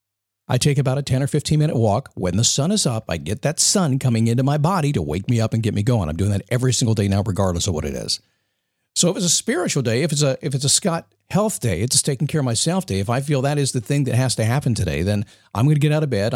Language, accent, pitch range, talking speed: English, American, 105-145 Hz, 305 wpm